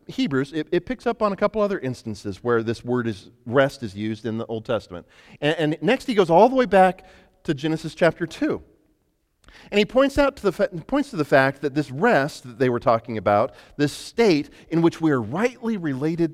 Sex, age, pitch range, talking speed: male, 40-59, 125-195 Hz, 225 wpm